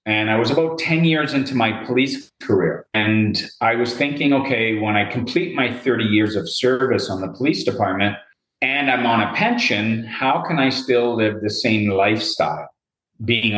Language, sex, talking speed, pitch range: English, male, 180 wpm, 100-125 Hz